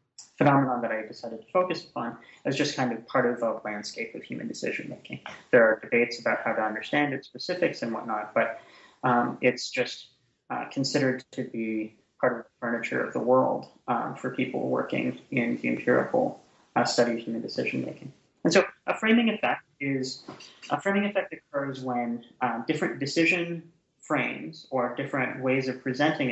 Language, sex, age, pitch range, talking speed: English, male, 20-39, 125-155 Hz, 175 wpm